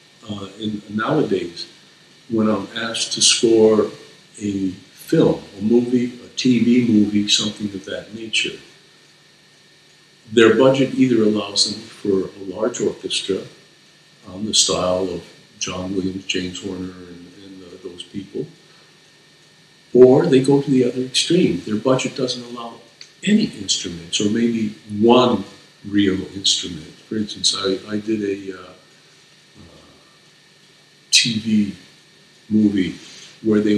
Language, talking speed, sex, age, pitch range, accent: English, 125 wpm, male, 50-69, 100-125 Hz, American